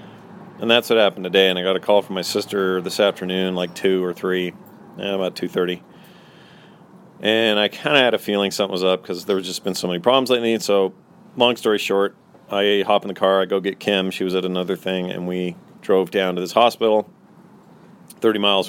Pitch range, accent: 90-105 Hz, American